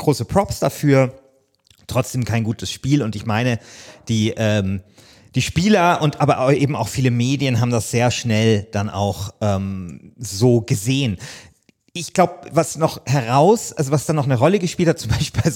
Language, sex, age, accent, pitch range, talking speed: German, male, 30-49, German, 120-145 Hz, 175 wpm